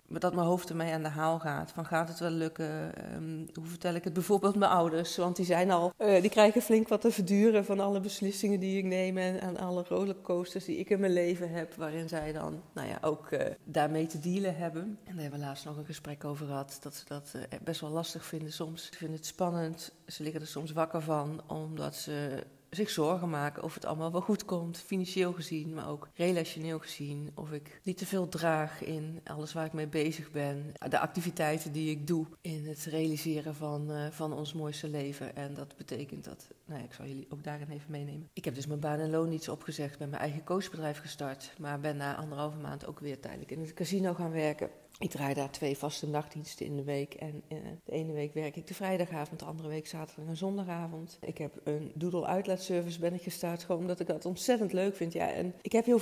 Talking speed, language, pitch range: 230 wpm, Dutch, 155-180 Hz